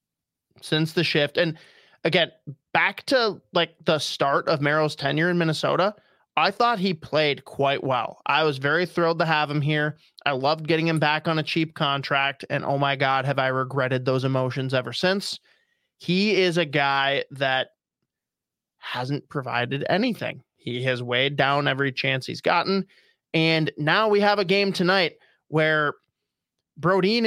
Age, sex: 20-39, male